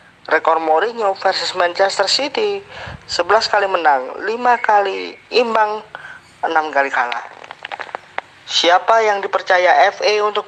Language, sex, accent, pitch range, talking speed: Indonesian, male, native, 180-225 Hz, 110 wpm